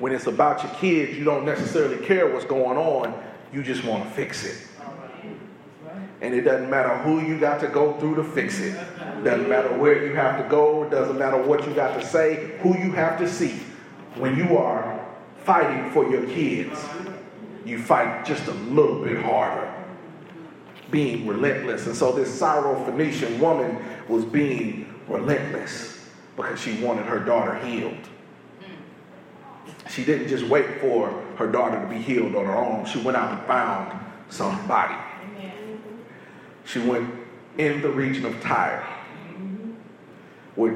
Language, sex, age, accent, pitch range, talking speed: English, male, 40-59, American, 130-175 Hz, 160 wpm